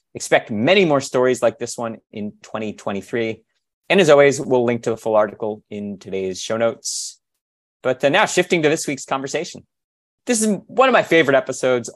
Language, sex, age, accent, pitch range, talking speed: English, male, 30-49, American, 110-145 Hz, 185 wpm